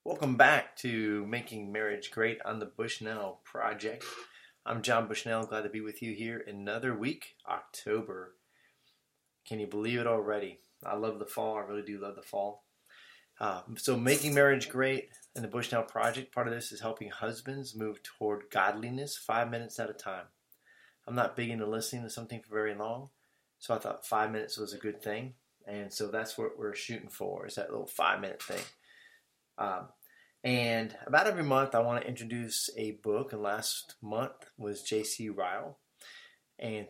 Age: 30-49